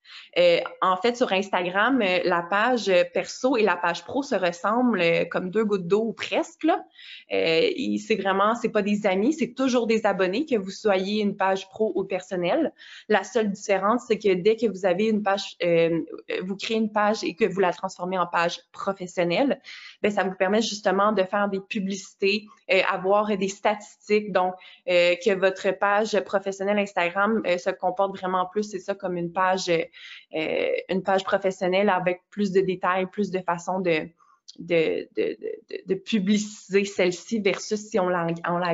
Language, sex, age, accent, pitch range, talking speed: French, female, 20-39, Canadian, 185-220 Hz, 175 wpm